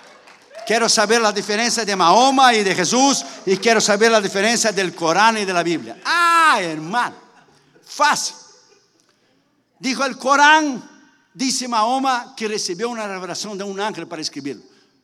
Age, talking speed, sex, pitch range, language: 60-79, 150 wpm, male, 180-235 Hz, Spanish